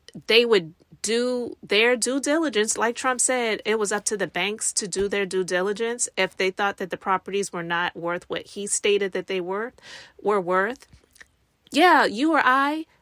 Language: English